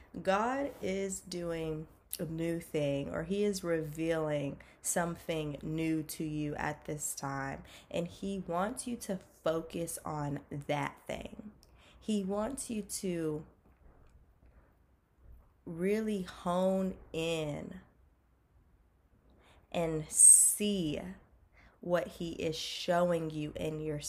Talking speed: 105 wpm